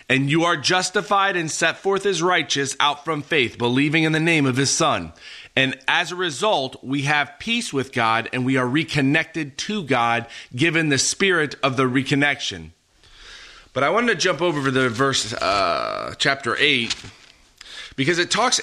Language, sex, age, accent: English, male, 30-49, American